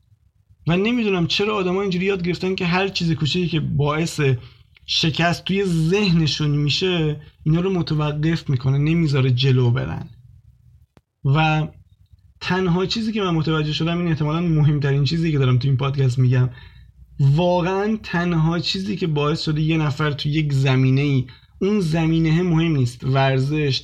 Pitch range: 130-165 Hz